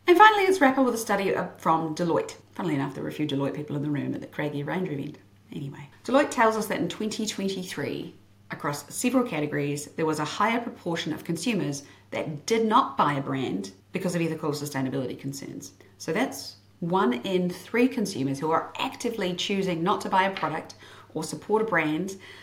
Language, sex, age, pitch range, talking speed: English, female, 40-59, 150-220 Hz, 195 wpm